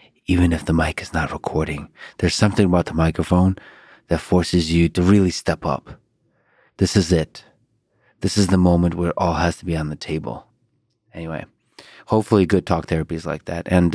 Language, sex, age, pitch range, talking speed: English, male, 30-49, 80-90 Hz, 190 wpm